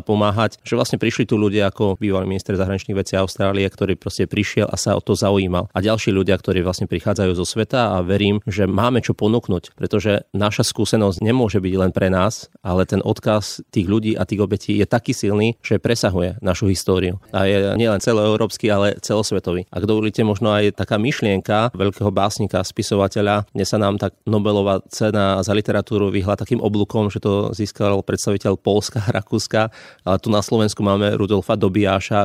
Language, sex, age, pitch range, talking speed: Slovak, male, 30-49, 95-110 Hz, 180 wpm